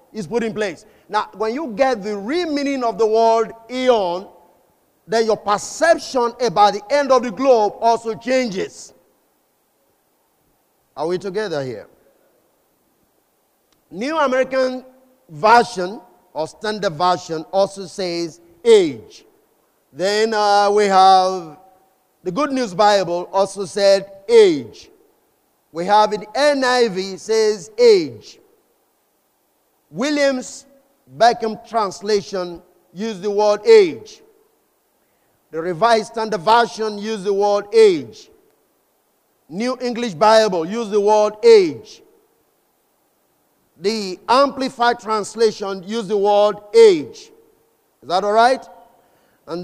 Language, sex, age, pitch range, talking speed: English, male, 50-69, 195-265 Hz, 110 wpm